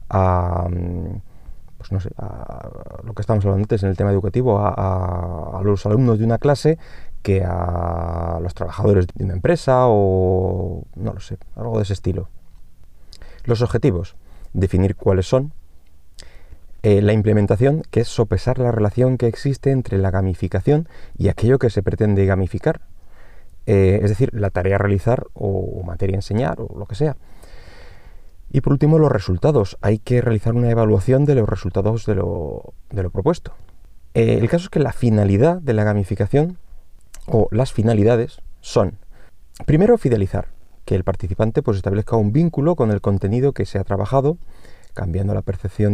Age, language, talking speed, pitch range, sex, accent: 20-39, Spanish, 160 wpm, 95-120 Hz, male, Spanish